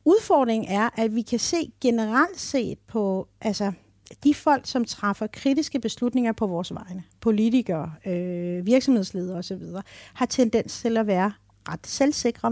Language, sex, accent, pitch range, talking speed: Danish, female, native, 195-265 Hz, 145 wpm